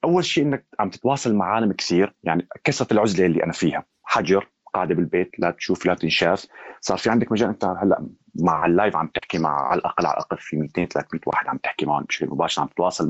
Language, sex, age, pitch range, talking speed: Arabic, male, 30-49, 85-110 Hz, 215 wpm